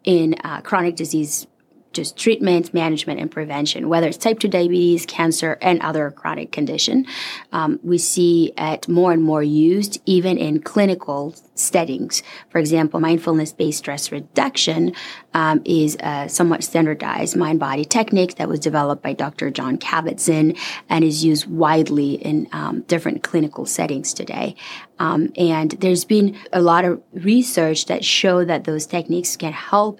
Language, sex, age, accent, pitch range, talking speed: English, female, 30-49, American, 155-175 Hz, 150 wpm